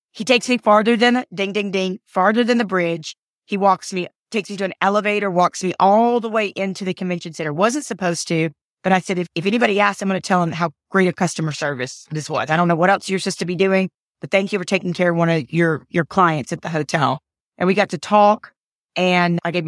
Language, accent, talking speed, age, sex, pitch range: English, American, 255 wpm, 30-49, female, 160-195 Hz